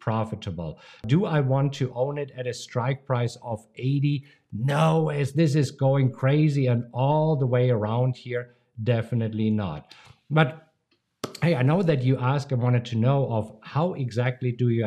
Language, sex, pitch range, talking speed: English, male, 125-160 Hz, 175 wpm